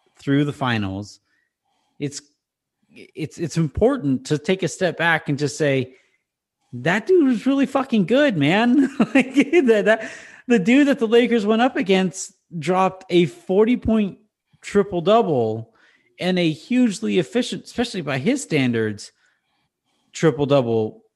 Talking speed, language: 140 wpm, English